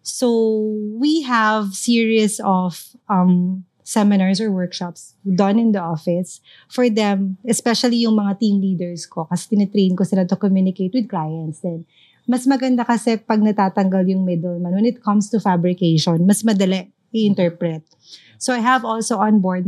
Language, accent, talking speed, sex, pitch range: Filipino, native, 150 wpm, female, 180-220 Hz